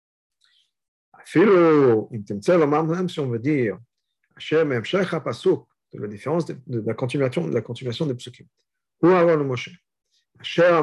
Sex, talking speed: male, 185 wpm